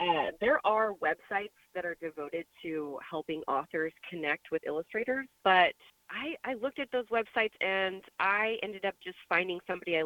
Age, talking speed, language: 30-49, 165 wpm, English